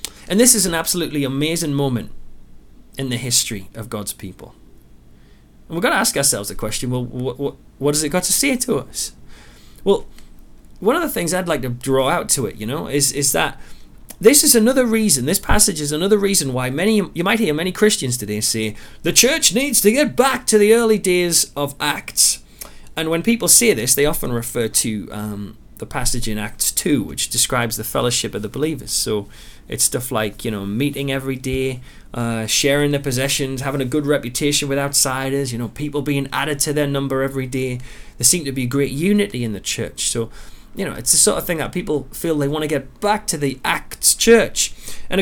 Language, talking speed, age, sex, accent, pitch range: English, 215 wpm, 30-49, male, British, 125-185 Hz